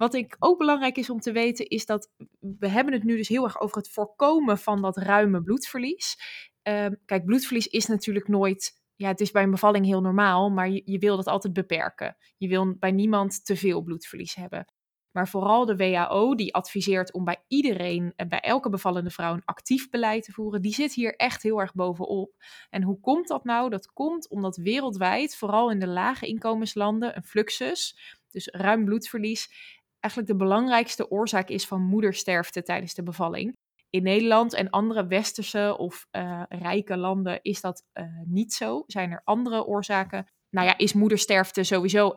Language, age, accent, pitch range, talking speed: Dutch, 20-39, Dutch, 190-225 Hz, 185 wpm